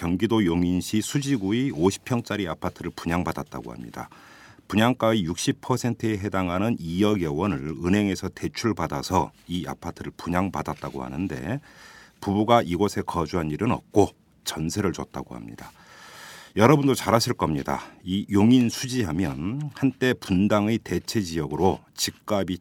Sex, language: male, Korean